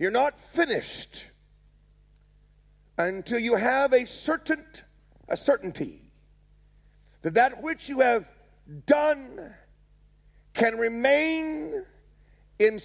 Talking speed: 90 wpm